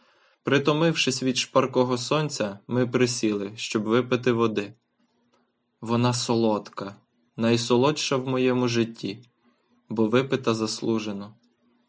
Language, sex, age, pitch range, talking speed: Ukrainian, male, 20-39, 110-125 Hz, 90 wpm